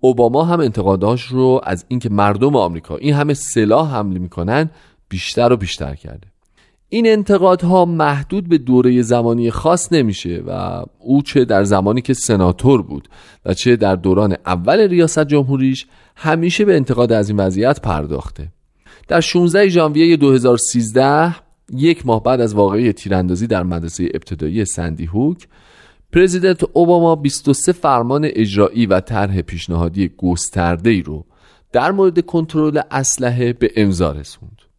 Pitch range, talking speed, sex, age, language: 100-155 Hz, 140 wpm, male, 40-59, Persian